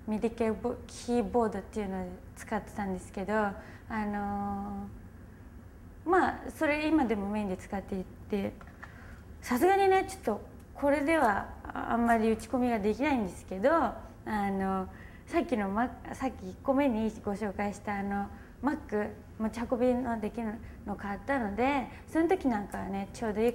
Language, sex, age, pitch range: Japanese, female, 20-39, 200-265 Hz